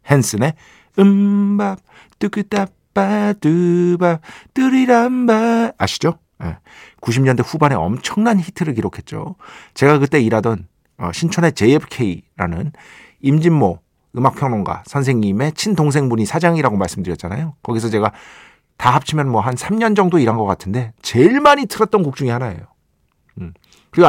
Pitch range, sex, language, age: 115-170 Hz, male, Korean, 50-69